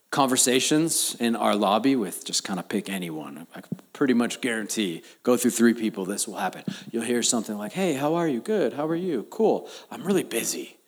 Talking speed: 205 wpm